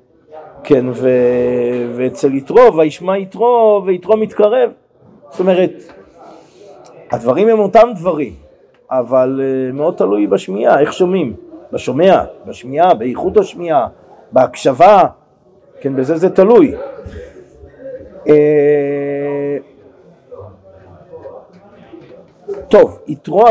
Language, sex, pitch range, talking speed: Hebrew, male, 140-215 Hz, 80 wpm